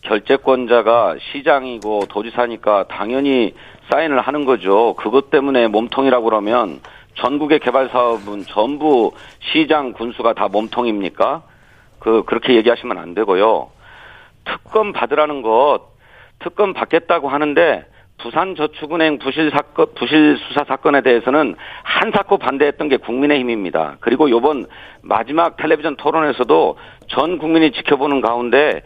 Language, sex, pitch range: Korean, male, 125-165 Hz